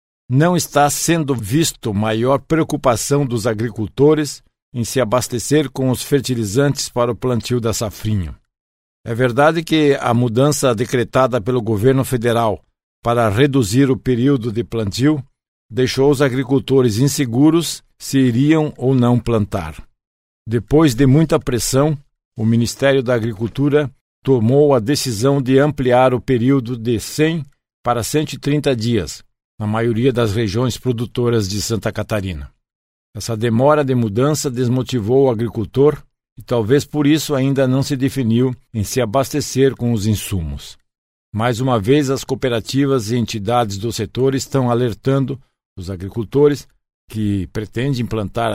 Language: Portuguese